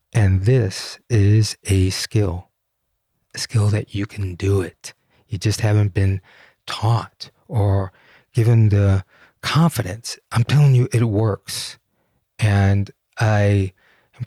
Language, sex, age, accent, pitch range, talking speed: English, male, 30-49, American, 95-120 Hz, 120 wpm